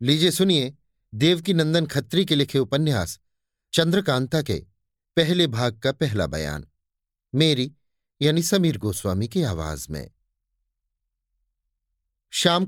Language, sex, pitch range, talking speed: Hindi, male, 100-150 Hz, 110 wpm